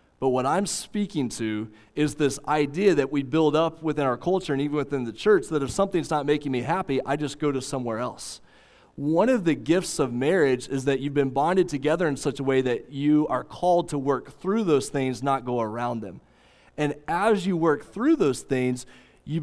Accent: American